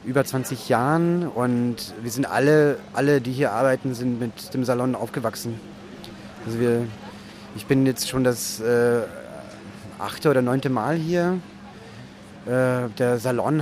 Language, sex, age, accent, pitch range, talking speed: German, male, 30-49, German, 125-140 Hz, 140 wpm